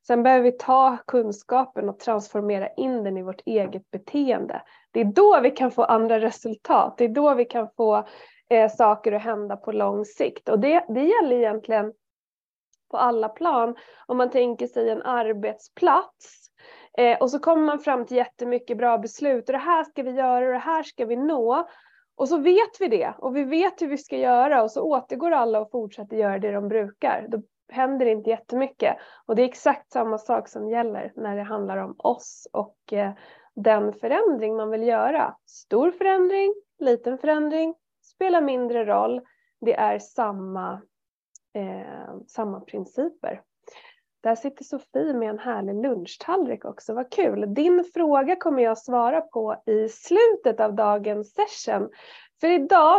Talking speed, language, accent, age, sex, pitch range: 170 wpm, Swedish, native, 20-39, female, 220-315 Hz